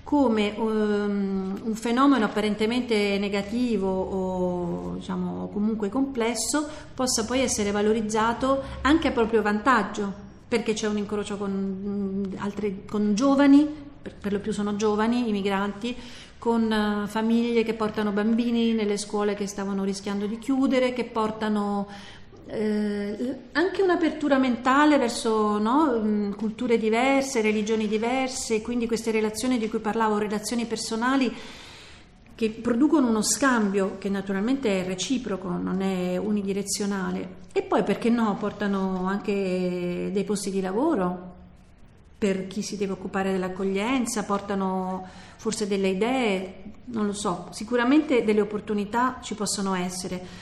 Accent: native